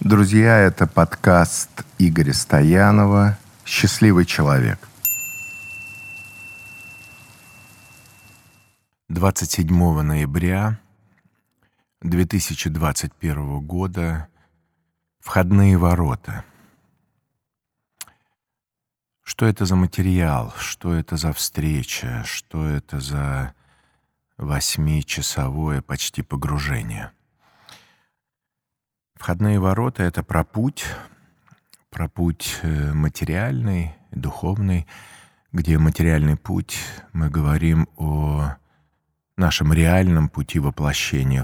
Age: 50-69